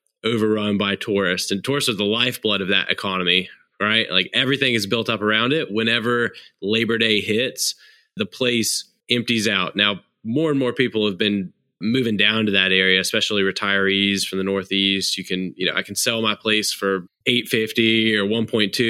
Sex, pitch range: male, 95-115 Hz